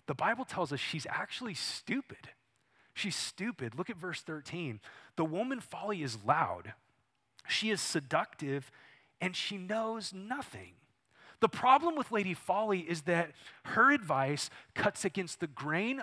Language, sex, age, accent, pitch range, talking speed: English, male, 30-49, American, 150-210 Hz, 140 wpm